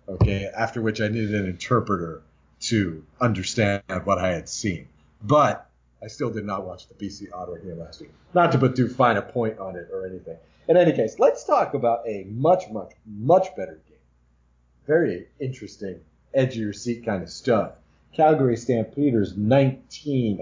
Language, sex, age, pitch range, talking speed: English, male, 40-59, 95-135 Hz, 170 wpm